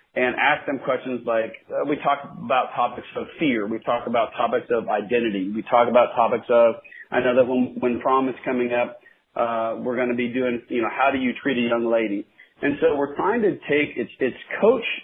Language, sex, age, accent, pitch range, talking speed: English, male, 40-59, American, 120-140 Hz, 220 wpm